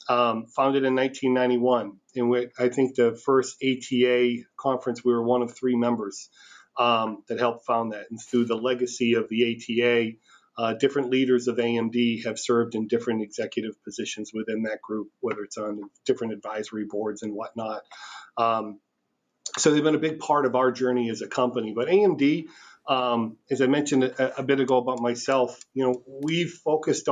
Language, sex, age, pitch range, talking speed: English, male, 40-59, 115-130 Hz, 175 wpm